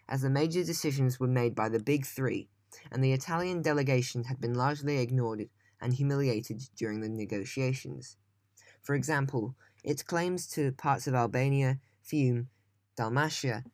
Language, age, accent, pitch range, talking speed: English, 10-29, British, 110-140 Hz, 145 wpm